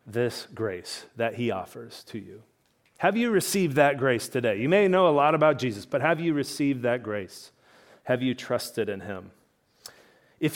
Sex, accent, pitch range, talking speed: male, American, 110-135 Hz, 180 wpm